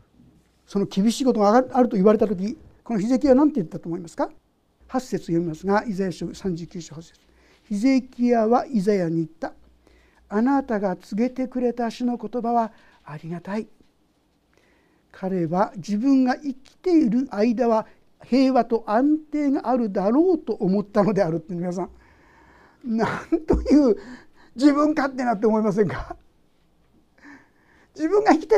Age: 60-79